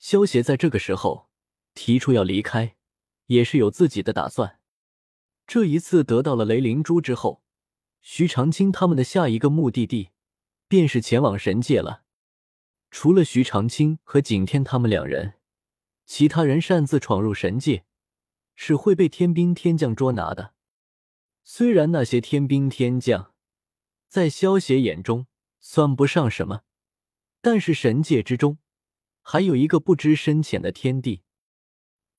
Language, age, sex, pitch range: Chinese, 20-39, male, 110-160 Hz